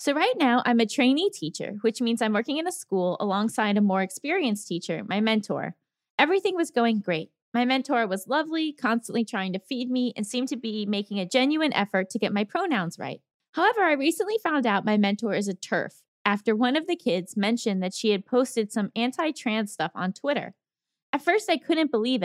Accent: American